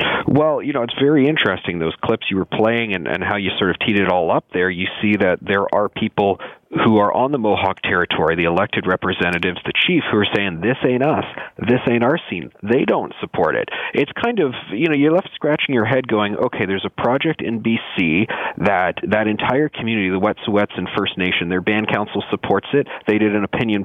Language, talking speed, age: English, 220 wpm, 40-59